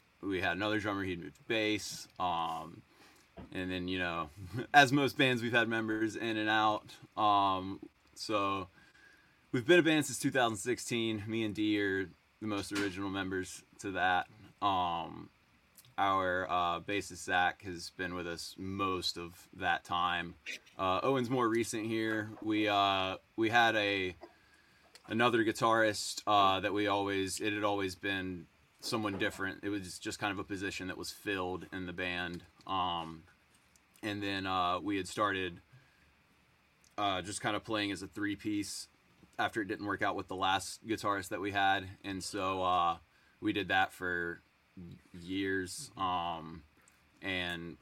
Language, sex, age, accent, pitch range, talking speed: English, male, 20-39, American, 90-110 Hz, 155 wpm